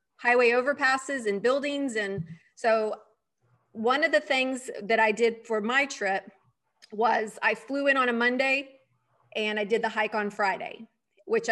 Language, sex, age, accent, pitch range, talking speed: English, female, 30-49, American, 215-255 Hz, 160 wpm